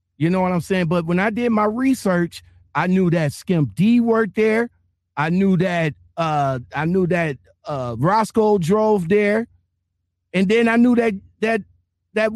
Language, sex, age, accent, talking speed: English, male, 50-69, American, 175 wpm